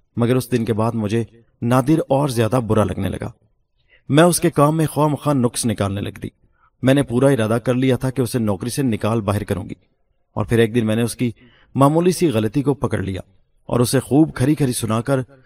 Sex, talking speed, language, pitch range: male, 225 wpm, Urdu, 105-130 Hz